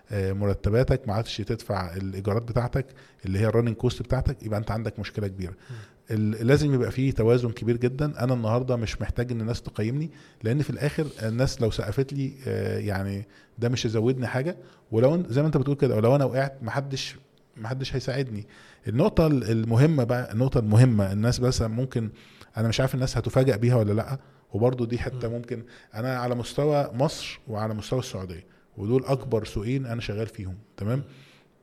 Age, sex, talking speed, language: 20-39, male, 165 wpm, Arabic